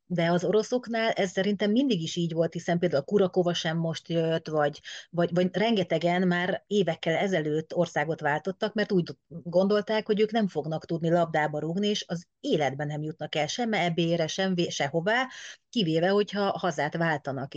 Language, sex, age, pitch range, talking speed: Hungarian, female, 30-49, 165-190 Hz, 165 wpm